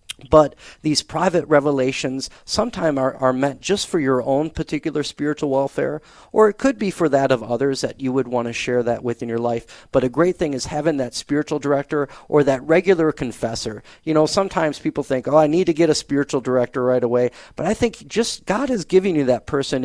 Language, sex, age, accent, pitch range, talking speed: English, male, 40-59, American, 120-155 Hz, 220 wpm